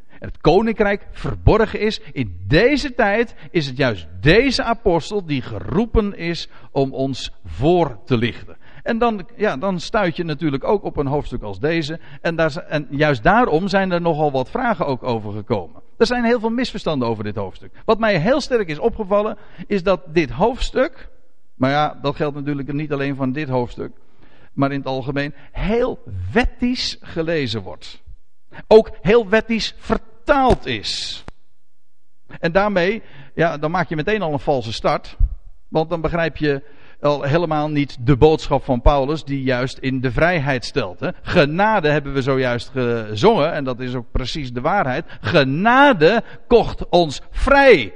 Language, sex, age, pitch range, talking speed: Dutch, male, 50-69, 135-200 Hz, 165 wpm